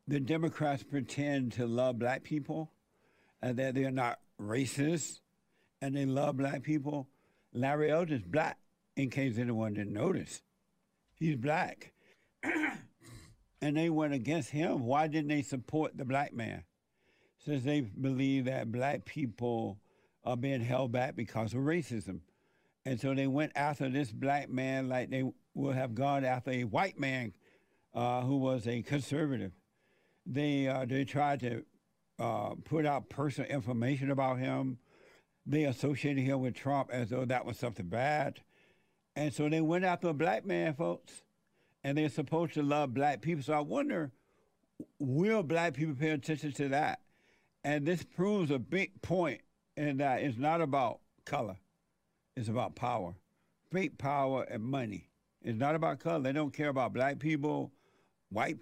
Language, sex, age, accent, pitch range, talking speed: English, male, 60-79, American, 130-150 Hz, 160 wpm